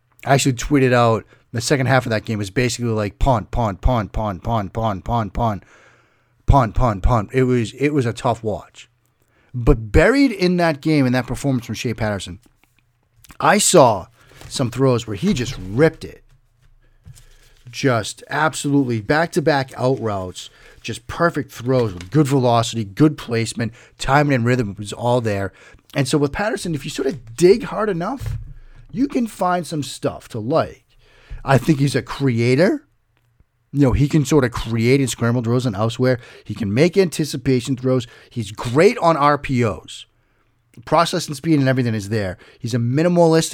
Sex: male